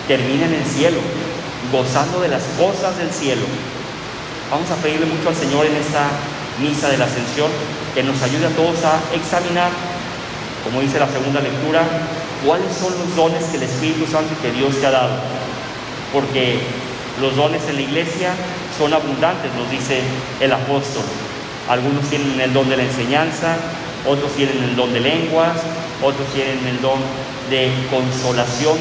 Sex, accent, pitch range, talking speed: male, Mexican, 130-155 Hz, 165 wpm